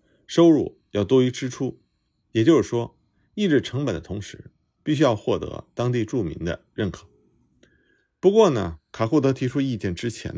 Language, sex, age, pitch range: Chinese, male, 50-69, 95-130 Hz